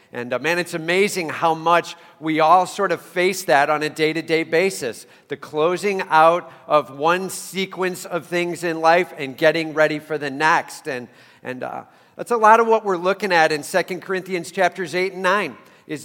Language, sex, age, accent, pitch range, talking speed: English, male, 50-69, American, 160-190 Hz, 195 wpm